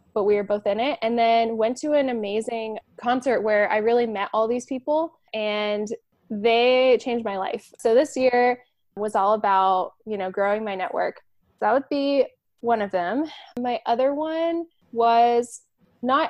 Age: 10-29